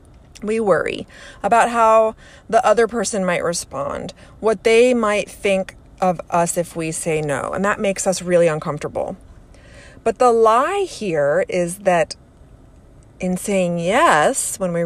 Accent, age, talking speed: American, 30-49, 145 wpm